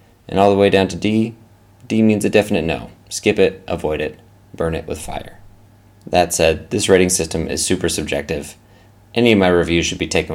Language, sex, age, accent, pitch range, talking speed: English, male, 20-39, American, 85-100 Hz, 205 wpm